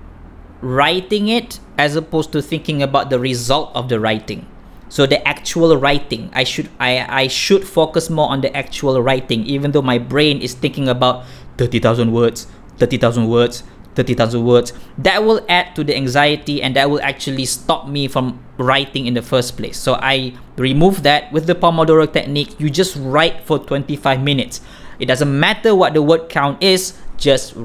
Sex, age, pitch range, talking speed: male, 20-39, 125-165 Hz, 175 wpm